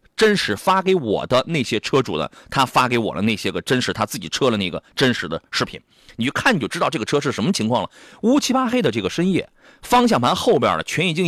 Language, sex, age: Chinese, male, 30-49